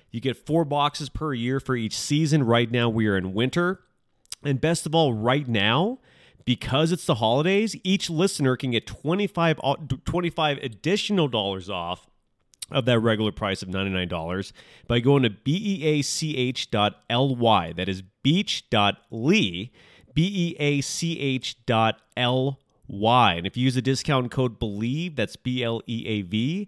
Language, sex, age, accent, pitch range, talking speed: English, male, 30-49, American, 105-140 Hz, 135 wpm